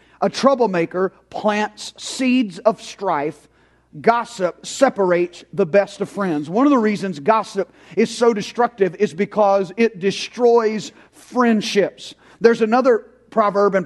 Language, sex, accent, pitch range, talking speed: English, male, American, 195-245 Hz, 125 wpm